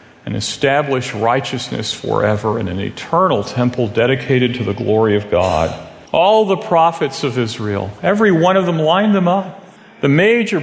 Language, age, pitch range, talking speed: English, 40-59, 125-190 Hz, 160 wpm